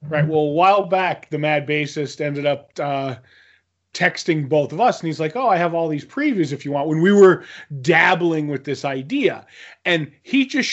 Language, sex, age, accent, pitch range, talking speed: English, male, 30-49, American, 150-205 Hz, 205 wpm